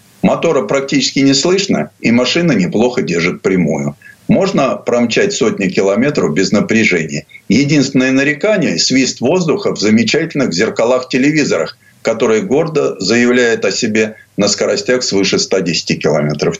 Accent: native